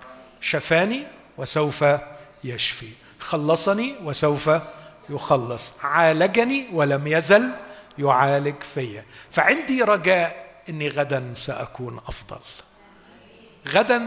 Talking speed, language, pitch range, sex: 75 wpm, Arabic, 145-215 Hz, male